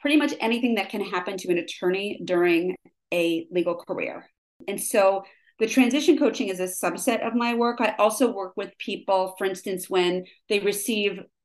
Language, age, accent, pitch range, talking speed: English, 30-49, American, 185-220 Hz, 180 wpm